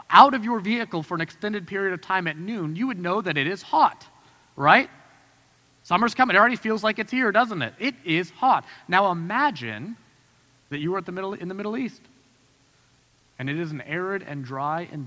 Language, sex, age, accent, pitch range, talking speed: English, male, 30-49, American, 155-205 Hz, 200 wpm